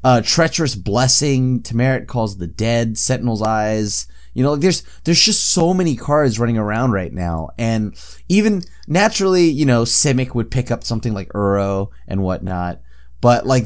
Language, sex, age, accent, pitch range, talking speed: English, male, 20-39, American, 100-135 Hz, 165 wpm